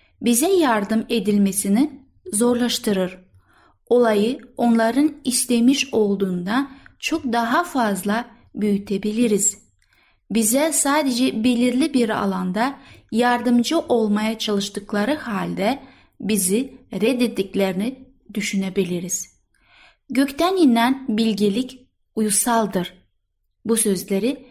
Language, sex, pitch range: Turkish, female, 205-255 Hz